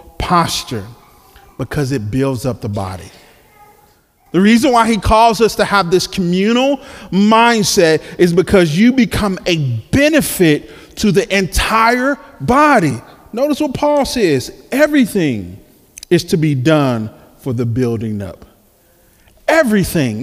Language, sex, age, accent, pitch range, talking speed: English, male, 40-59, American, 160-235 Hz, 125 wpm